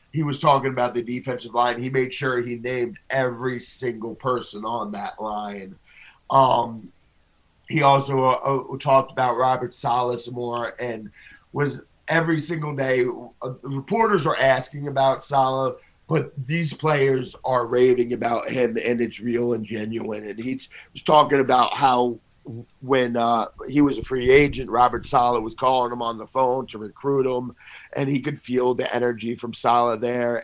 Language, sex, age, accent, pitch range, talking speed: English, male, 40-59, American, 120-145 Hz, 165 wpm